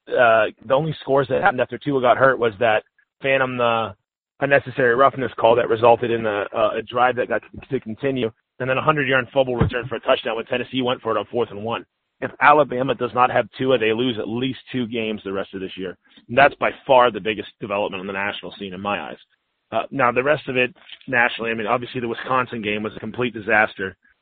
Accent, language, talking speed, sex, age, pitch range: American, English, 230 wpm, male, 30-49, 115-135 Hz